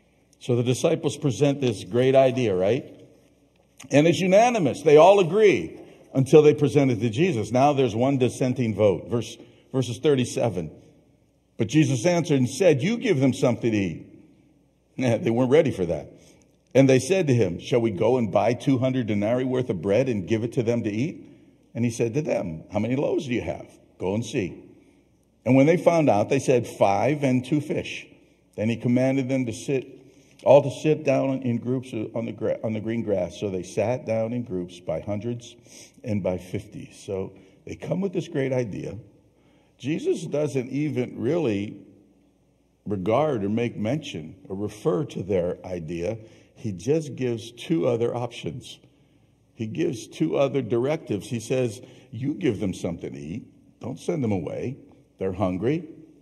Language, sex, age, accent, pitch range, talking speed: English, male, 50-69, American, 115-145 Hz, 175 wpm